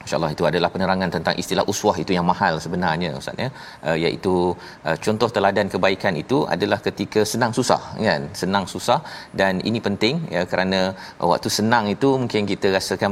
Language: Malayalam